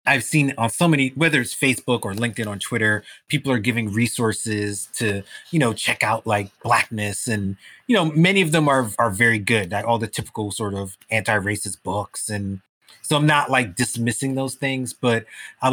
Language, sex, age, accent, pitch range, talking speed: English, male, 30-49, American, 105-125 Hz, 195 wpm